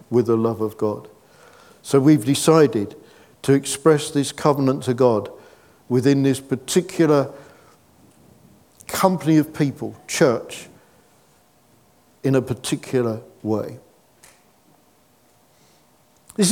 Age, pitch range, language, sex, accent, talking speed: 50-69, 130-175 Hz, English, male, British, 95 wpm